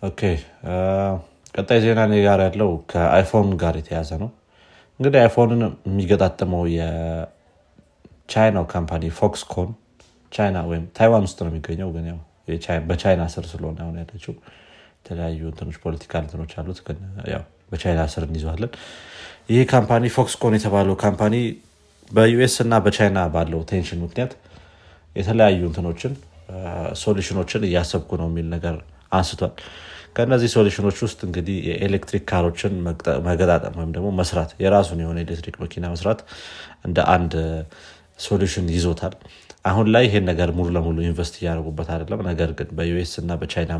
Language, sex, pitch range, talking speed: Amharic, male, 80-100 Hz, 105 wpm